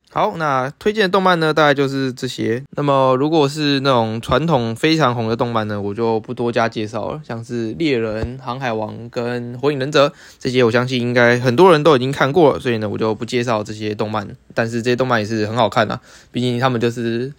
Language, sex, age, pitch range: Chinese, male, 20-39, 115-135 Hz